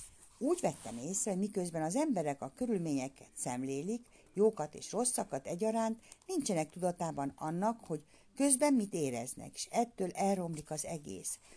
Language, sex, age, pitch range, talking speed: Hungarian, female, 60-79, 150-215 Hz, 135 wpm